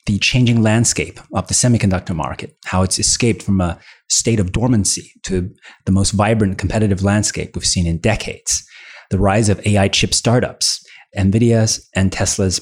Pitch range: 95-110 Hz